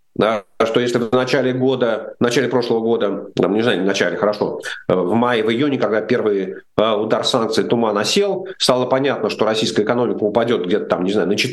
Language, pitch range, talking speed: Russian, 120-145 Hz, 185 wpm